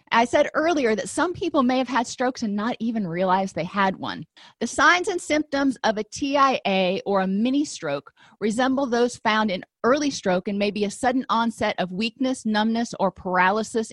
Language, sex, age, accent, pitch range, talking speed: English, female, 30-49, American, 190-235 Hz, 195 wpm